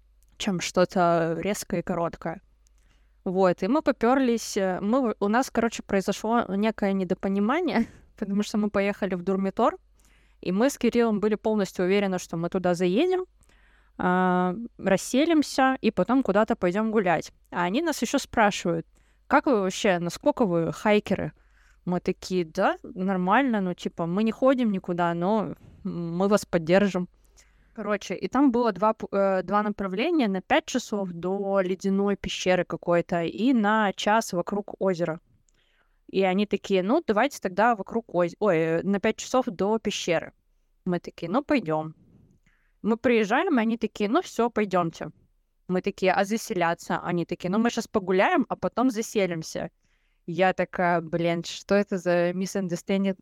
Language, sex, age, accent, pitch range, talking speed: Russian, female, 20-39, native, 180-225 Hz, 145 wpm